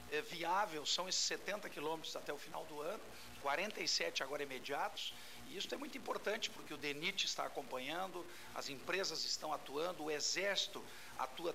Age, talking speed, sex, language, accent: 50-69, 155 wpm, male, Portuguese, Brazilian